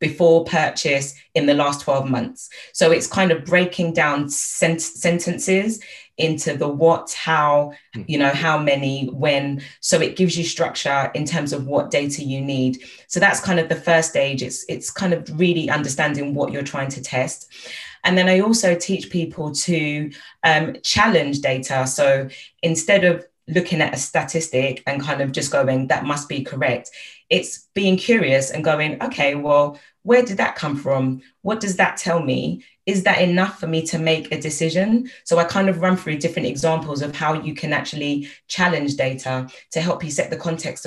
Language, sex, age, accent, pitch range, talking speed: English, female, 20-39, British, 140-170 Hz, 185 wpm